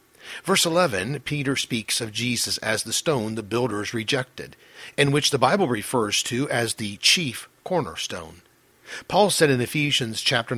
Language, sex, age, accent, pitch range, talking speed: English, male, 50-69, American, 115-155 Hz, 155 wpm